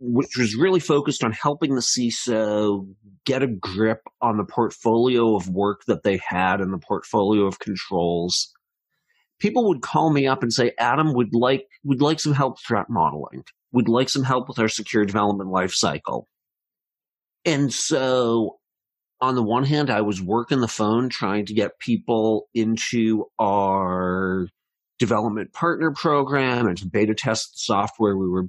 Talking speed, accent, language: 160 wpm, American, English